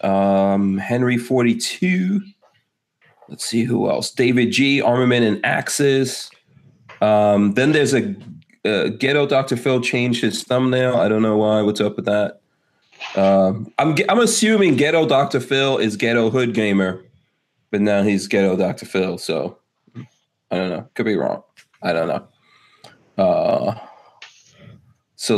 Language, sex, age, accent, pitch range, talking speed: English, male, 30-49, American, 110-155 Hz, 140 wpm